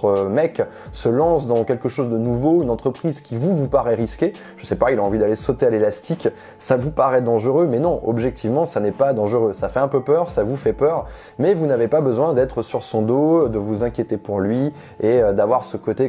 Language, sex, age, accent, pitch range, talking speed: French, male, 20-39, French, 110-150 Hz, 235 wpm